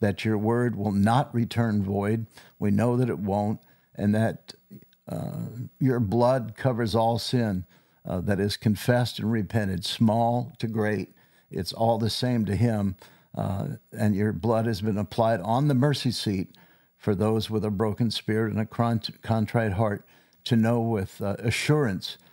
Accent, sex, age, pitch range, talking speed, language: American, male, 60-79, 105-120 Hz, 165 wpm, English